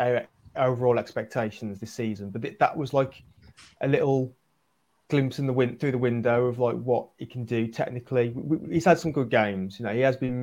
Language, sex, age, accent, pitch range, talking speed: English, male, 20-39, British, 110-130 Hz, 215 wpm